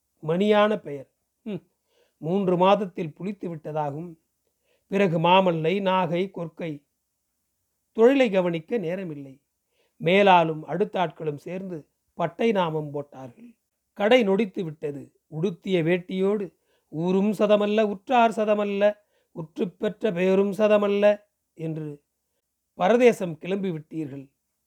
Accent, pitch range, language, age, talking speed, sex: native, 160-210 Hz, Tamil, 40-59, 85 wpm, male